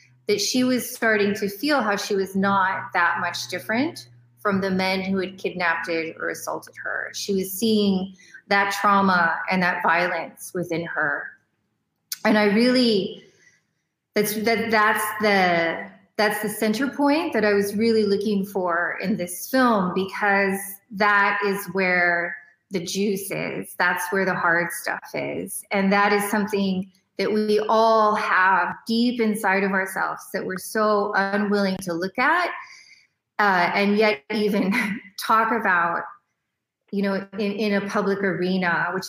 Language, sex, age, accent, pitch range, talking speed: English, female, 30-49, American, 185-215 Hz, 150 wpm